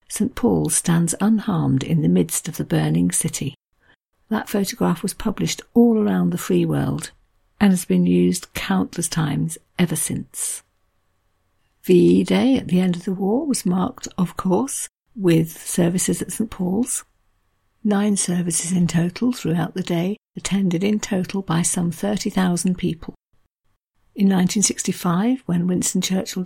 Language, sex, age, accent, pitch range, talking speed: English, female, 50-69, British, 165-200 Hz, 145 wpm